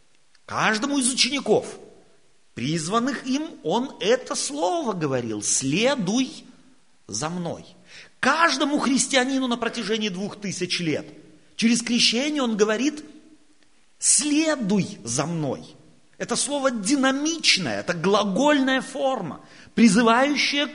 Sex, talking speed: male, 95 wpm